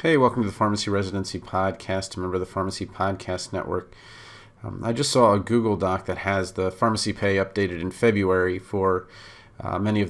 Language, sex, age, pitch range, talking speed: English, male, 30-49, 95-110 Hz, 195 wpm